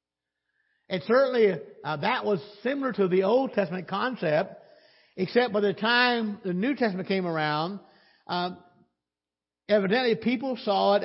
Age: 60-79